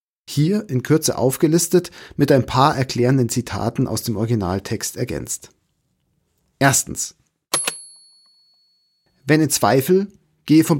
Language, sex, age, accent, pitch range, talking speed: German, male, 40-59, German, 125-165 Hz, 105 wpm